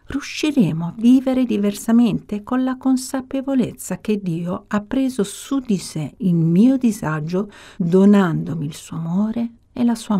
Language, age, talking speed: Italian, 50-69, 140 wpm